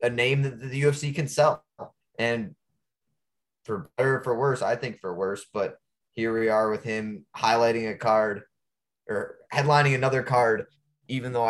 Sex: male